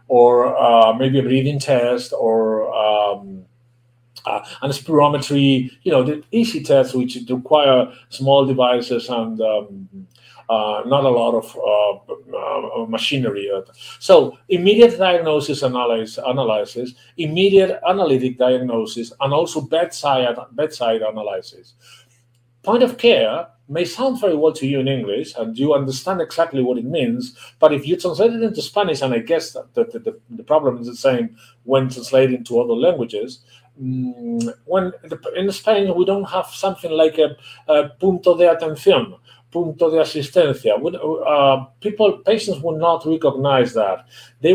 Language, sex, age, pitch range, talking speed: English, male, 50-69, 120-170 Hz, 145 wpm